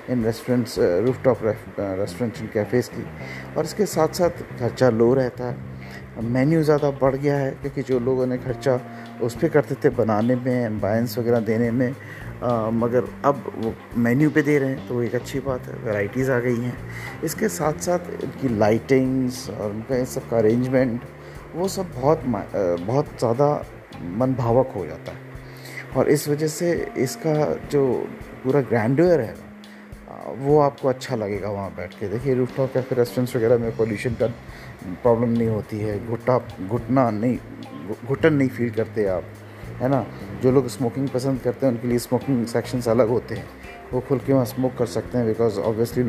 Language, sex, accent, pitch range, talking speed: Hindi, male, native, 115-140 Hz, 175 wpm